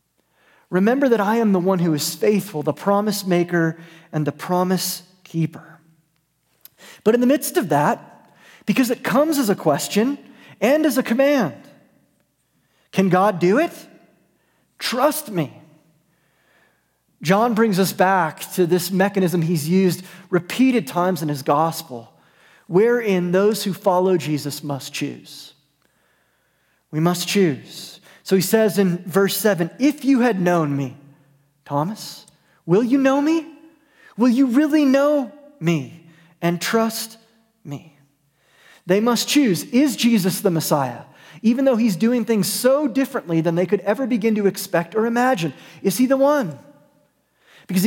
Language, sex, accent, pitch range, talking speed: English, male, American, 165-240 Hz, 145 wpm